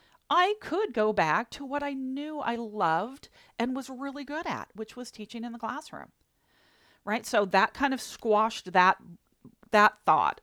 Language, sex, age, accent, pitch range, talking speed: English, female, 40-59, American, 175-265 Hz, 175 wpm